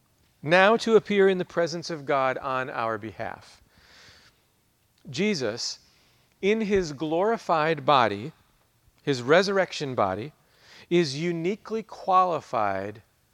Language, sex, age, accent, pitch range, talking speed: English, male, 40-59, American, 120-160 Hz, 100 wpm